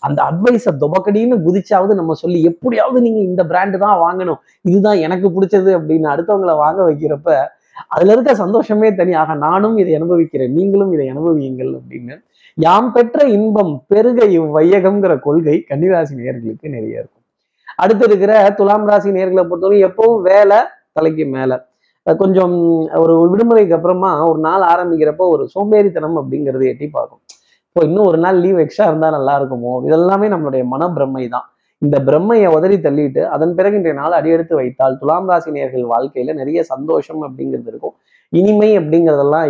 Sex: male